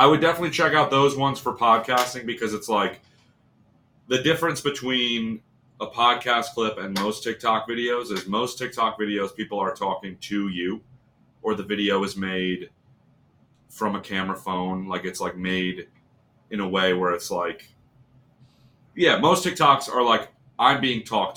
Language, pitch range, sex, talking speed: English, 100-130 Hz, male, 165 wpm